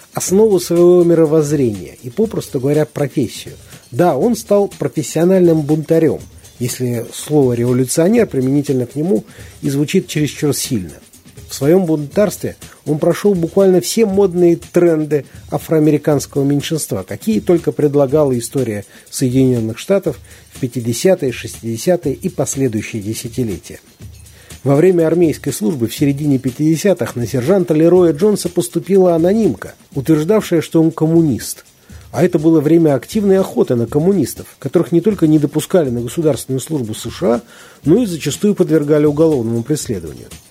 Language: Russian